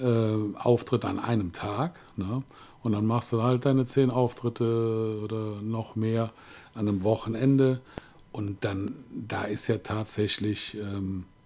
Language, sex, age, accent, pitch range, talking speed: German, male, 50-69, German, 100-125 Hz, 130 wpm